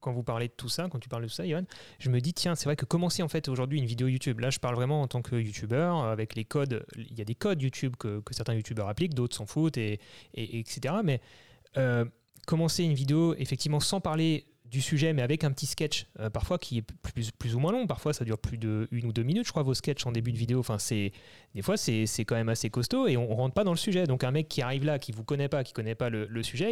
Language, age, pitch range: French, 30-49, 120-165 Hz